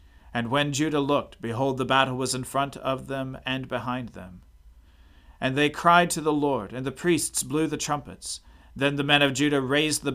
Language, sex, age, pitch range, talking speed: English, male, 40-59, 100-140 Hz, 200 wpm